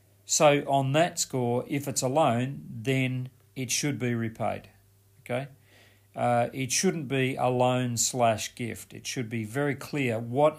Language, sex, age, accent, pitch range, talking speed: English, male, 40-59, Australian, 110-135 Hz, 160 wpm